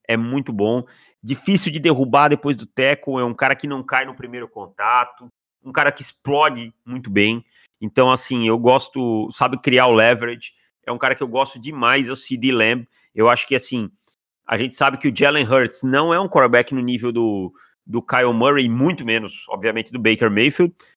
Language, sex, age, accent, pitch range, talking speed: Portuguese, male, 30-49, Brazilian, 120-145 Hz, 195 wpm